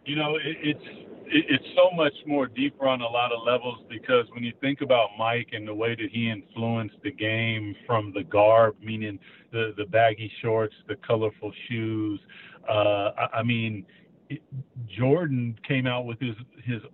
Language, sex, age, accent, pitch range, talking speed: English, male, 50-69, American, 115-135 Hz, 180 wpm